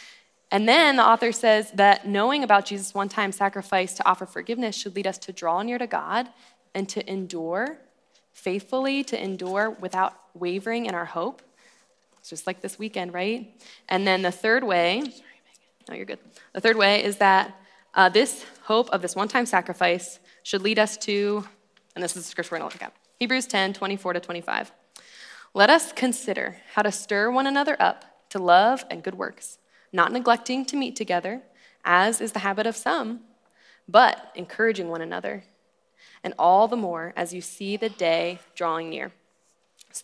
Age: 10-29